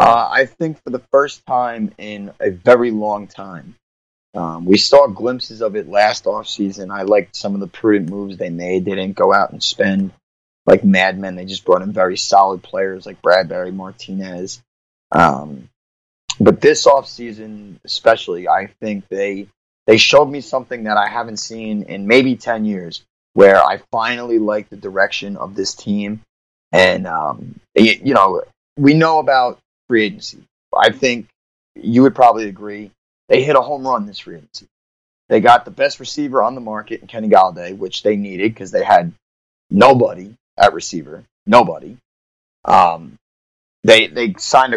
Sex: male